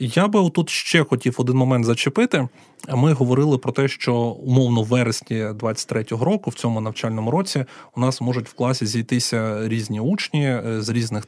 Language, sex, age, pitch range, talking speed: Ukrainian, male, 30-49, 120-155 Hz, 165 wpm